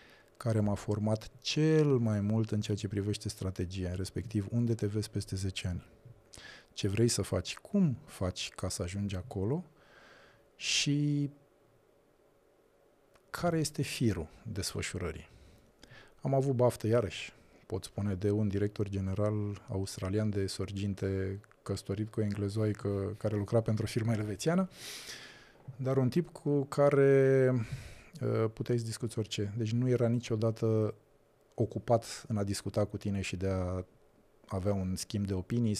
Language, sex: Romanian, male